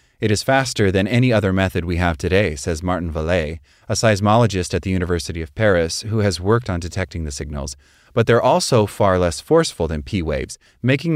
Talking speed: 195 wpm